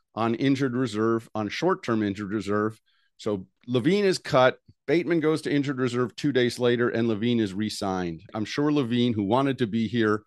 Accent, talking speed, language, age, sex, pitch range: American, 180 wpm, English, 50-69, male, 110-150 Hz